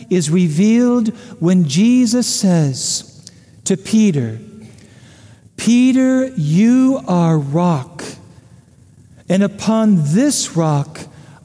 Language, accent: English, American